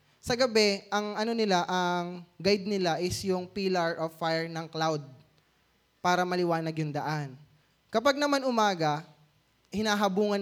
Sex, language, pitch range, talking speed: male, English, 145-215 Hz, 130 wpm